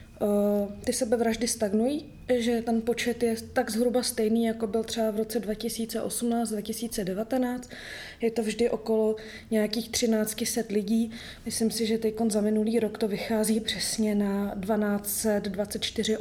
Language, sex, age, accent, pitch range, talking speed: Czech, female, 20-39, native, 215-230 Hz, 135 wpm